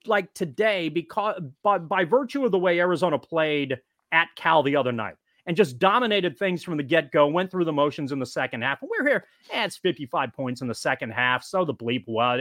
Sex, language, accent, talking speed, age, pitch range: male, English, American, 225 wpm, 30-49, 145-195 Hz